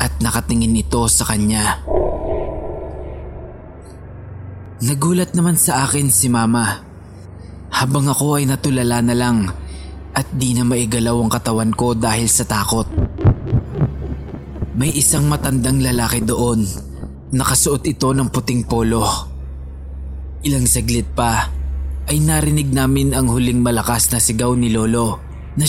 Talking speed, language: 120 wpm, English